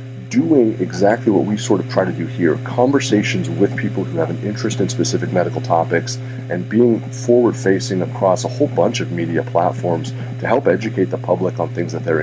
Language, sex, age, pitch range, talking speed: English, male, 40-59, 90-120 Hz, 195 wpm